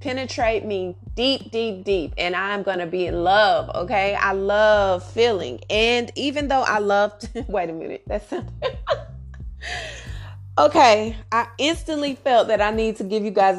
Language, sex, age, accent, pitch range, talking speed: English, female, 30-49, American, 190-245 Hz, 165 wpm